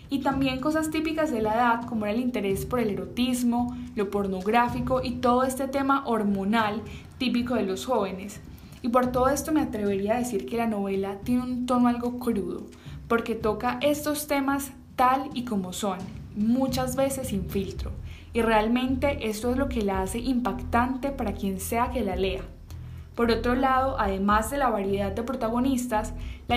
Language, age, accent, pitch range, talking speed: Spanish, 10-29, Colombian, 210-260 Hz, 175 wpm